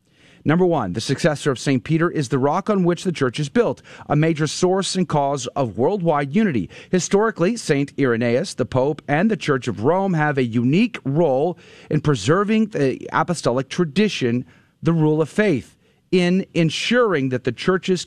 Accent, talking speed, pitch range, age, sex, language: American, 175 wpm, 135-180 Hz, 40-59, male, English